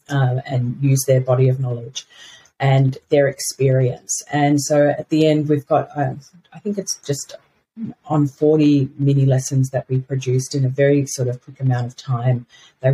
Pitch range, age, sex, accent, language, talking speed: 135-155 Hz, 40-59, female, Australian, English, 180 wpm